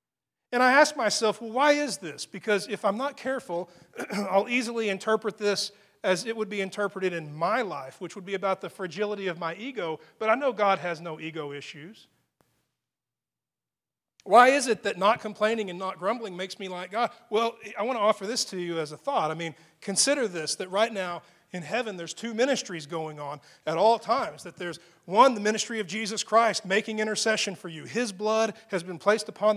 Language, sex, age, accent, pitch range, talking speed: English, male, 40-59, American, 175-220 Hz, 205 wpm